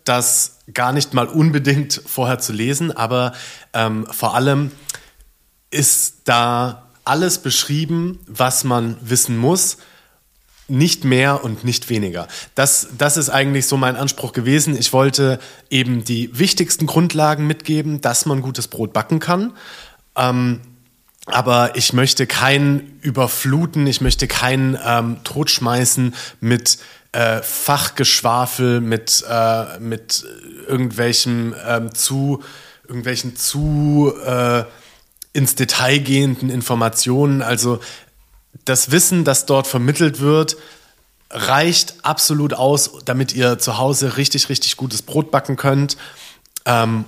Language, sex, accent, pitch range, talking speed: German, male, German, 115-140 Hz, 120 wpm